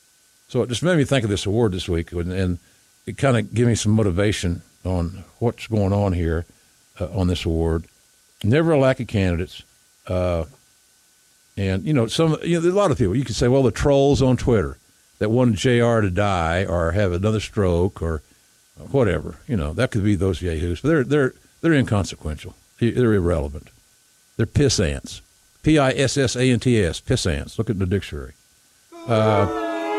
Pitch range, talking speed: 95-130 Hz, 195 wpm